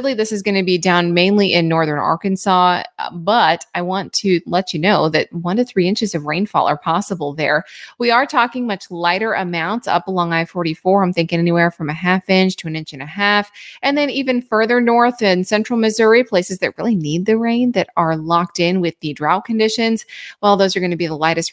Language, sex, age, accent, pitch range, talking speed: English, female, 20-39, American, 165-220 Hz, 225 wpm